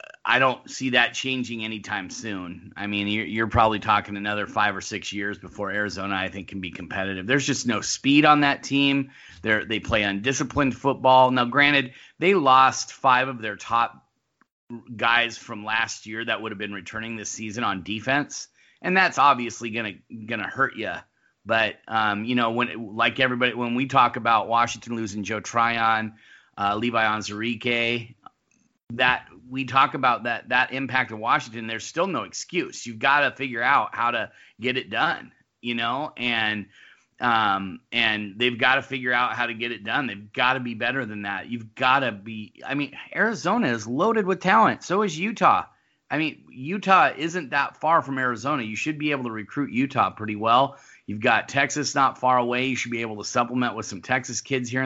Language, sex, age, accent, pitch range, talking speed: English, male, 30-49, American, 110-130 Hz, 195 wpm